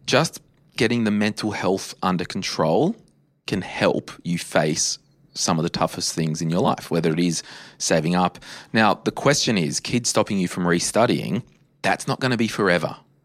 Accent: Australian